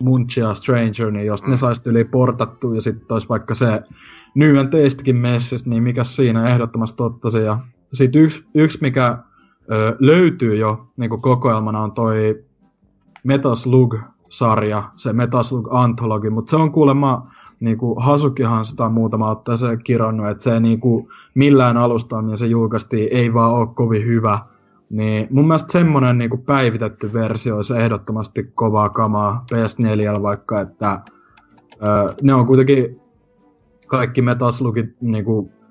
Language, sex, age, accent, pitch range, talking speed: Finnish, male, 20-39, native, 110-125 Hz, 135 wpm